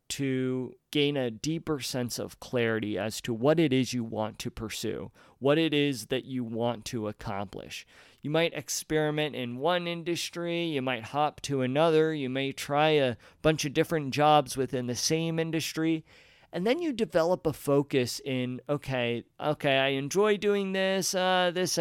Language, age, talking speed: English, 40-59, 170 wpm